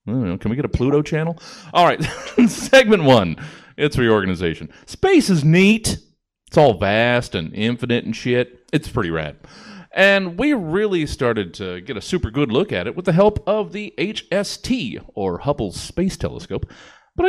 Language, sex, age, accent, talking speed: English, male, 30-49, American, 175 wpm